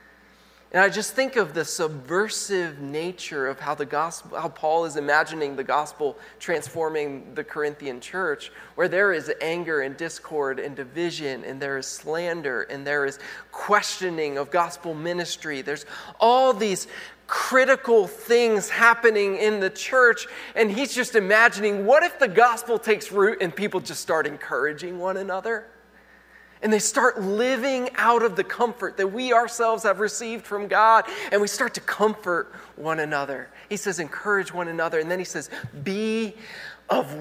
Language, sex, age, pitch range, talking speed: English, male, 20-39, 150-215 Hz, 160 wpm